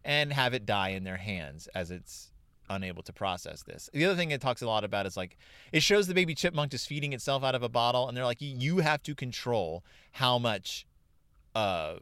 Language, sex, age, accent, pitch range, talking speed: English, male, 30-49, American, 95-140 Hz, 225 wpm